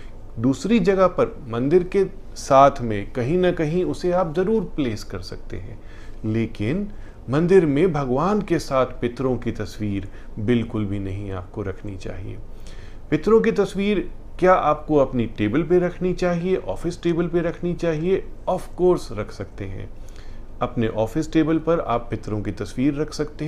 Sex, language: male, Hindi